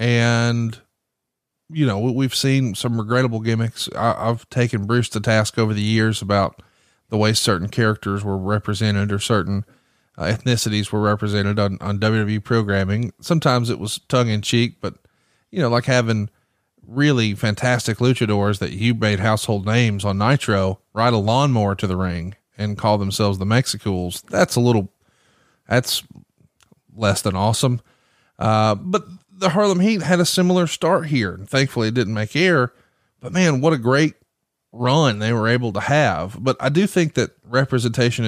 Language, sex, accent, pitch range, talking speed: English, male, American, 105-130 Hz, 165 wpm